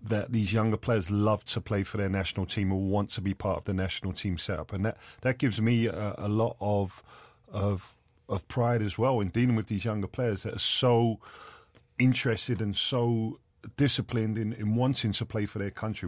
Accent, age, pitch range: British, 40-59, 100-115 Hz